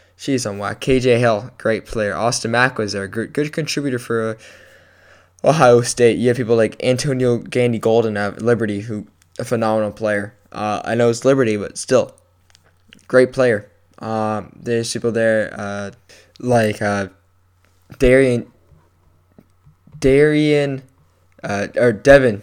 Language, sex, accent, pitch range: English, male, American, 105-125 Hz